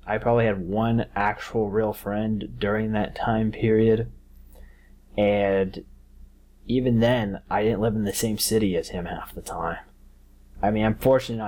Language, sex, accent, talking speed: English, male, American, 155 wpm